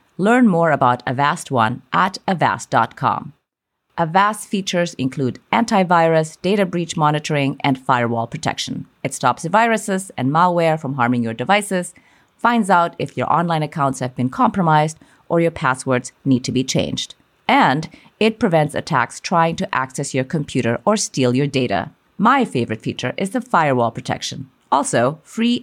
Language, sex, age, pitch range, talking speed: English, female, 30-49, 125-185 Hz, 150 wpm